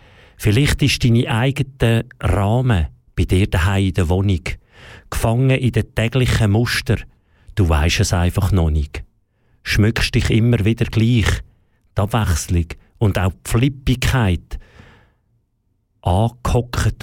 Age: 50-69